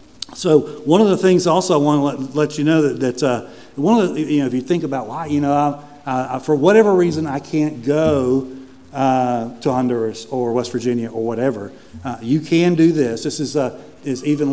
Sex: male